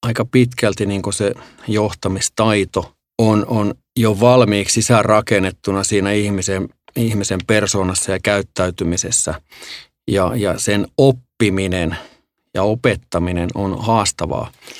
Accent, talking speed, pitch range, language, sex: native, 95 wpm, 100-115 Hz, Finnish, male